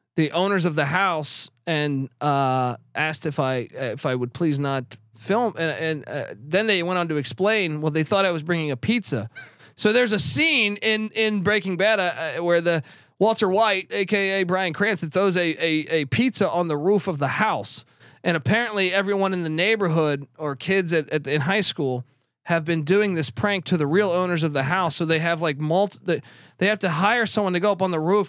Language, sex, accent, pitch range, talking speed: English, male, American, 160-210 Hz, 215 wpm